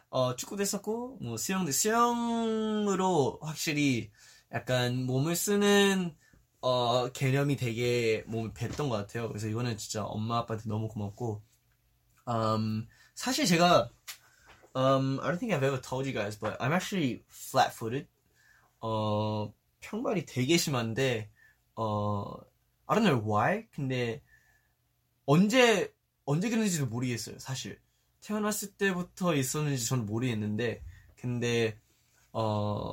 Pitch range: 115-170 Hz